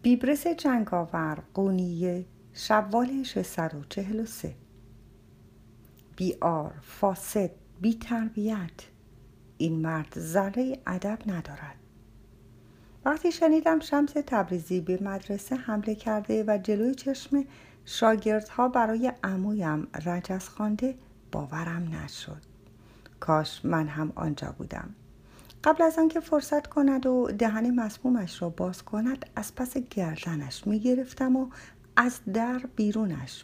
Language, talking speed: Persian, 100 wpm